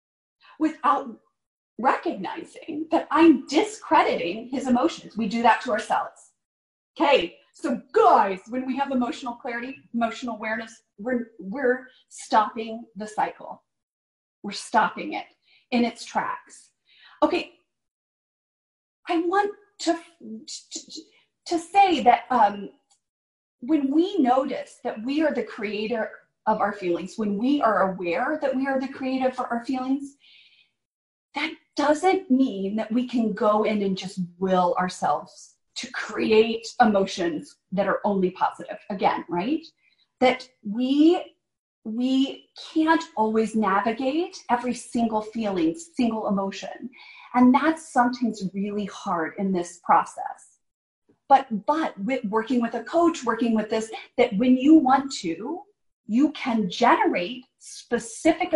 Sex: female